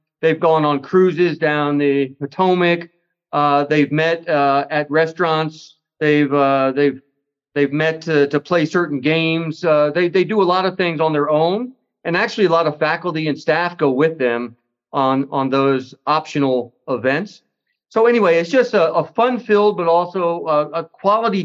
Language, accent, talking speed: English, American, 175 wpm